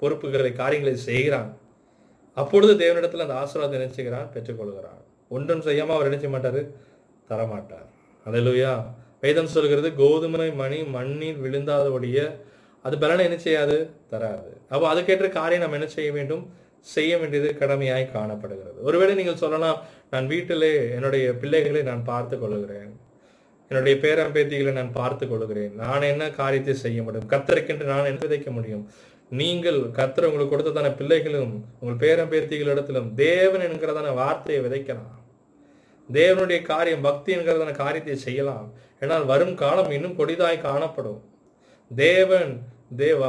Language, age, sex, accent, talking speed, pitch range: Tamil, 20-39, male, native, 110 wpm, 130-165 Hz